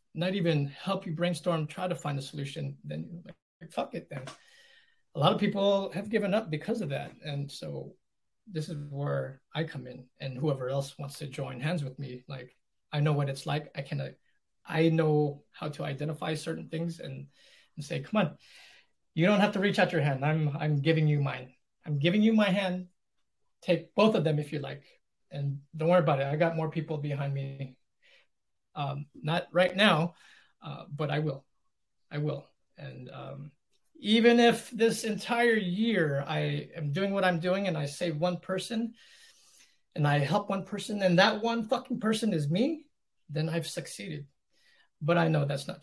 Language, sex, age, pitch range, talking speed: English, male, 20-39, 145-185 Hz, 195 wpm